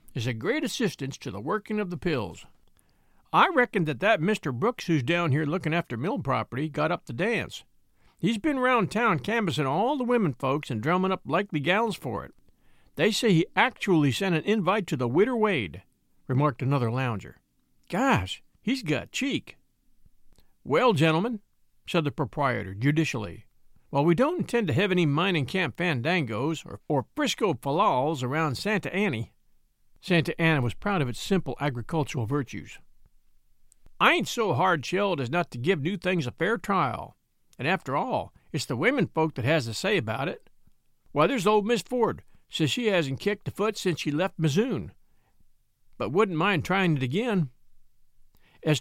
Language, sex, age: English, male, 50-69